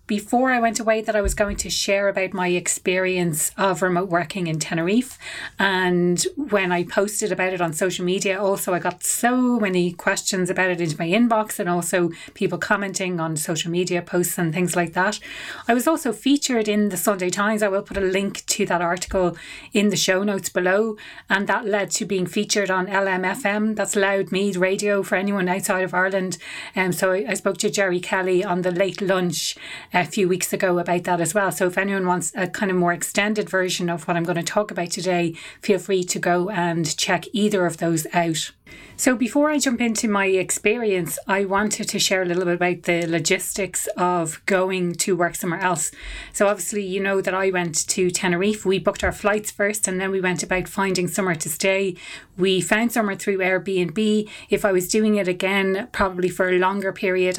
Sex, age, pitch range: female, 30-49, 180-205 Hz